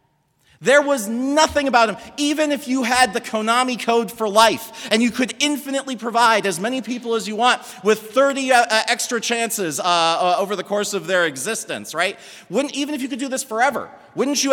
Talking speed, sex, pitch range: 205 wpm, male, 190-255 Hz